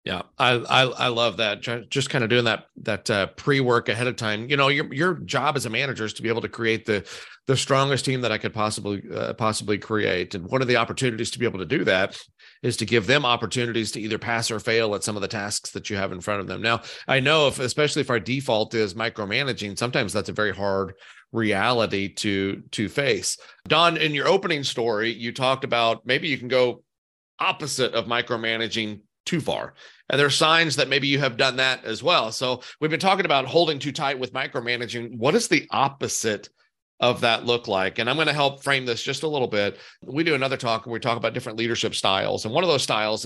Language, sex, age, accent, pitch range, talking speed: English, male, 40-59, American, 110-135 Hz, 235 wpm